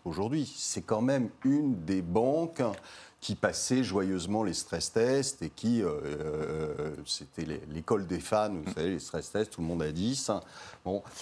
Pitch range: 95-135 Hz